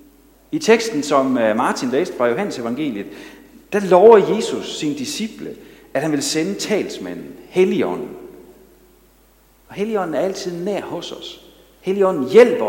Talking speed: 130 wpm